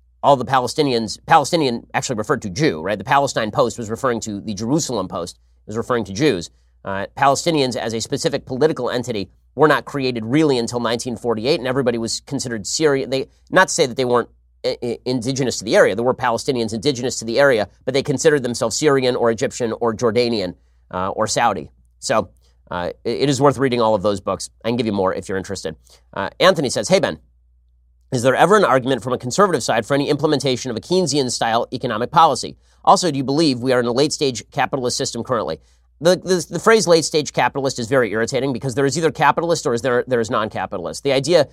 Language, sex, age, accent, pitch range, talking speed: English, male, 30-49, American, 110-140 Hz, 210 wpm